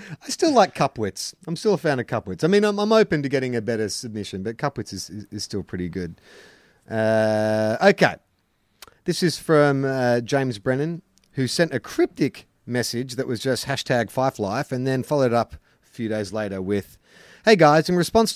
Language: English